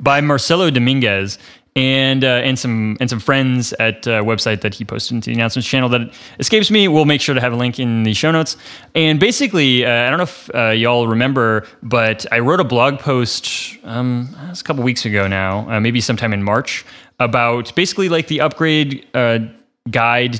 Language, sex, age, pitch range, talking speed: English, male, 20-39, 110-135 Hz, 205 wpm